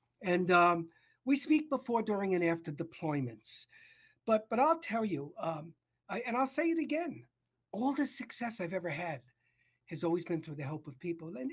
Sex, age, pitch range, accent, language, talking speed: male, 60-79, 175-260 Hz, American, English, 185 wpm